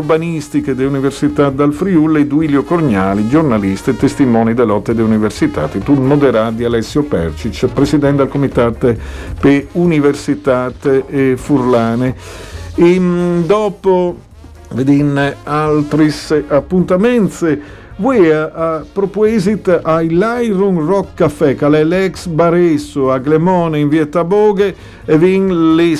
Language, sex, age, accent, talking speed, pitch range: Italian, male, 50-69, native, 110 wpm, 135-175 Hz